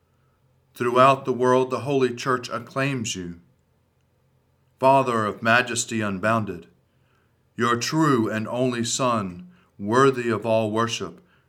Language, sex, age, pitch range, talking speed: English, male, 40-59, 110-130 Hz, 110 wpm